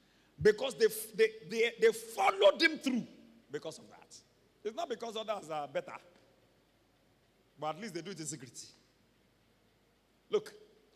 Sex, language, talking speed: male, English, 140 wpm